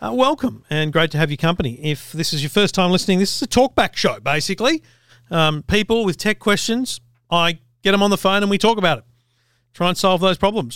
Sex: male